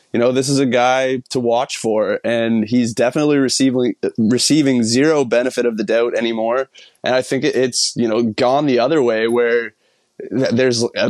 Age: 20-39